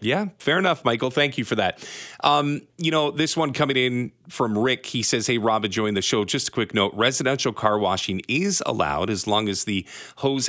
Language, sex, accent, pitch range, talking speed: English, male, American, 100-135 Hz, 215 wpm